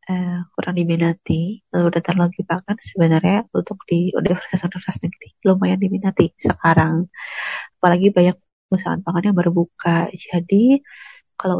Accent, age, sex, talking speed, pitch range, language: native, 20-39, female, 125 wpm, 175-200 Hz, Indonesian